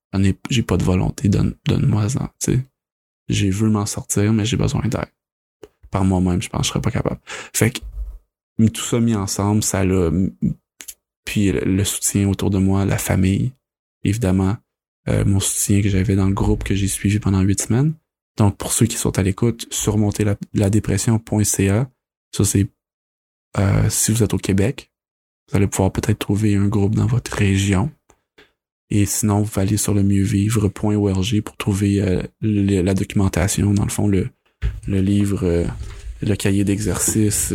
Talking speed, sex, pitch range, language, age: 175 wpm, male, 95-105 Hz, French, 20-39